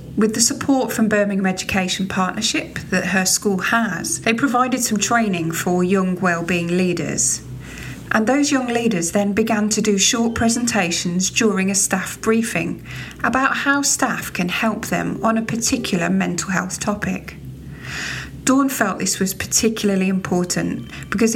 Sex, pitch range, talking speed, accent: female, 180-225 Hz, 145 wpm, British